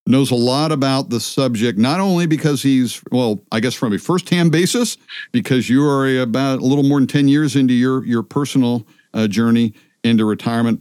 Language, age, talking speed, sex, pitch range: English, 50-69, 195 wpm, male, 105-135 Hz